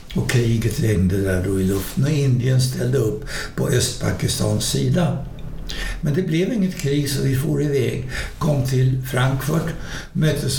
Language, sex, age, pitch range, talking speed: Swedish, male, 60-79, 110-140 Hz, 155 wpm